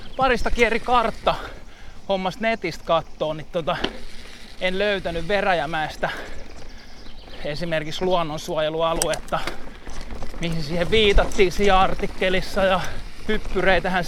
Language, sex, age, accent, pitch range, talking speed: Finnish, male, 20-39, native, 160-205 Hz, 85 wpm